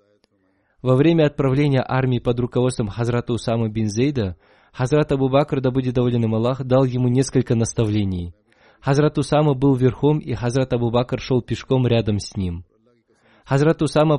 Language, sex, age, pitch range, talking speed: Russian, male, 20-39, 120-145 Hz, 150 wpm